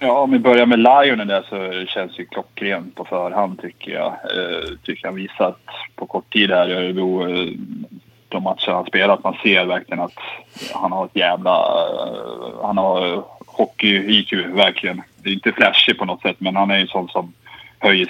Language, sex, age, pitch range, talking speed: Swedish, male, 20-39, 95-115 Hz, 190 wpm